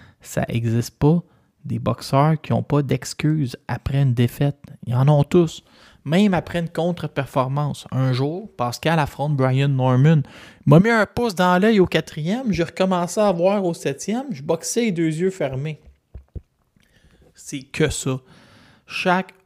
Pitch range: 130-165 Hz